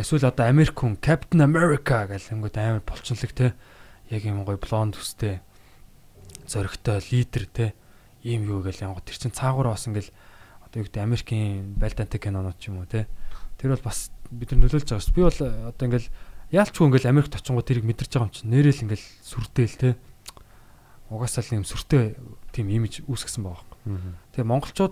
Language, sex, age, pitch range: Korean, male, 20-39, 100-130 Hz